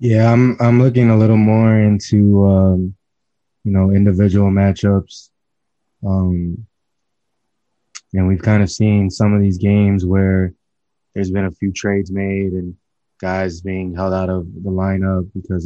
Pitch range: 95-105 Hz